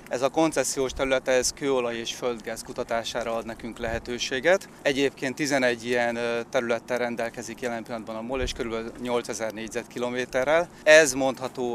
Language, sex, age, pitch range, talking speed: Hungarian, male, 30-49, 115-130 Hz, 140 wpm